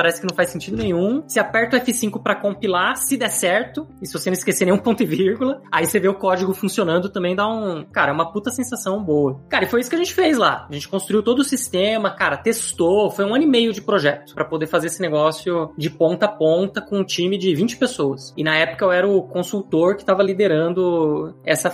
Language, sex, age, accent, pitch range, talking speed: Portuguese, male, 20-39, Brazilian, 170-230 Hz, 245 wpm